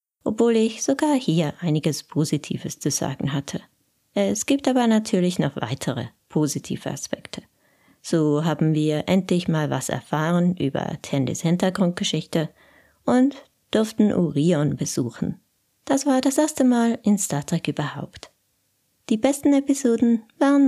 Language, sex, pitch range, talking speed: German, female, 155-235 Hz, 130 wpm